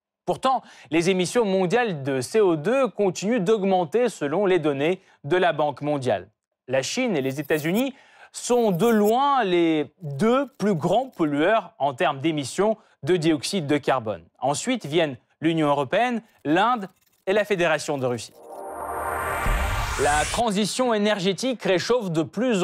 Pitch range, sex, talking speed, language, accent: 155-225 Hz, male, 135 wpm, French, French